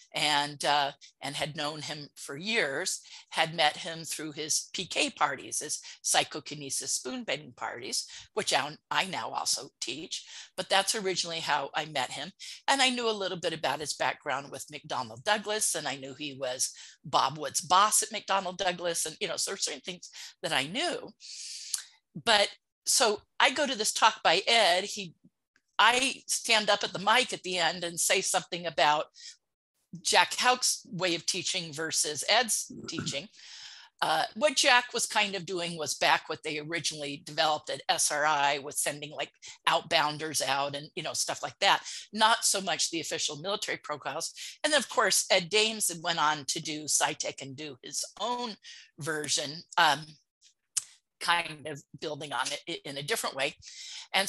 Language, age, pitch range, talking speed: English, 50-69, 150-210 Hz, 170 wpm